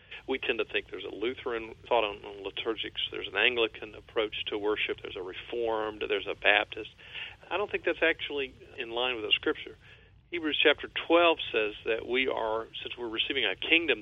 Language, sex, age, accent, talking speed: English, male, 50-69, American, 190 wpm